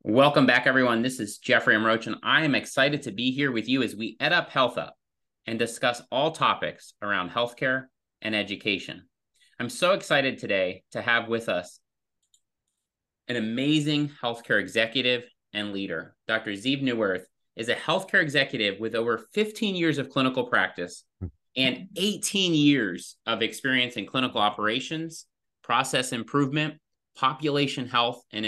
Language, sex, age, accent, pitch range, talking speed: English, male, 30-49, American, 115-150 Hz, 150 wpm